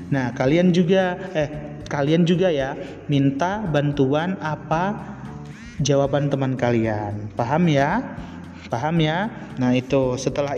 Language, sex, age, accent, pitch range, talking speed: Indonesian, male, 30-49, native, 135-165 Hz, 115 wpm